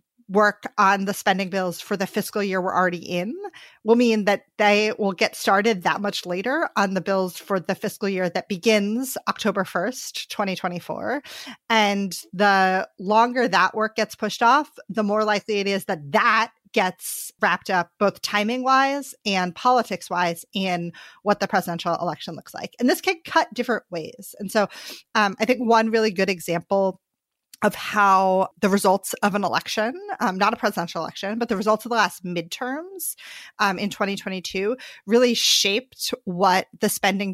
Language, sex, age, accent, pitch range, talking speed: English, female, 30-49, American, 185-220 Hz, 170 wpm